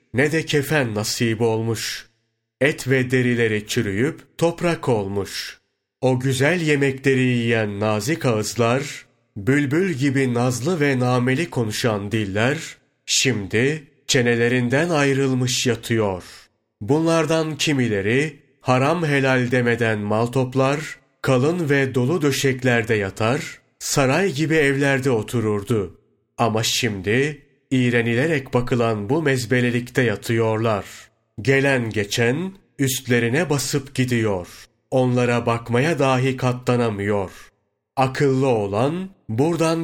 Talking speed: 95 wpm